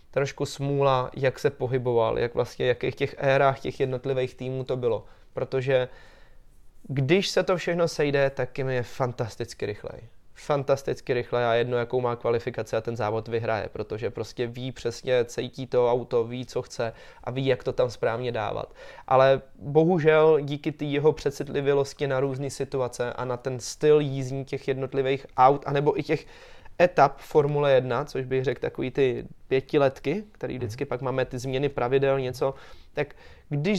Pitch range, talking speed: 130-155 Hz, 165 wpm